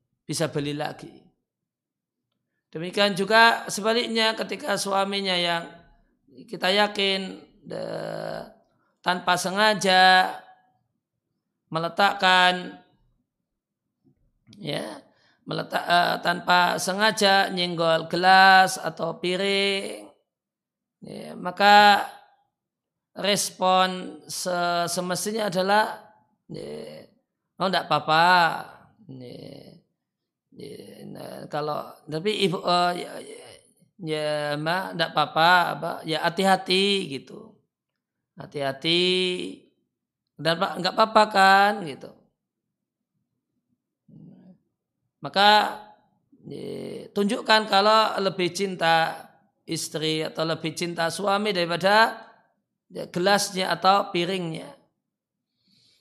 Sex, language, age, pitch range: male, Indonesian, 40-59, 170-205 Hz